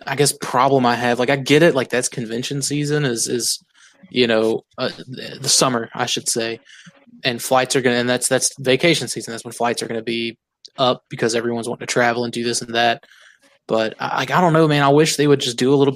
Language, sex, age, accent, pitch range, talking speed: English, male, 20-39, American, 120-155 Hz, 235 wpm